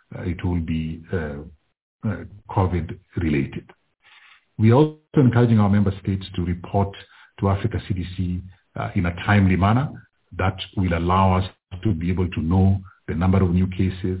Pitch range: 90-105 Hz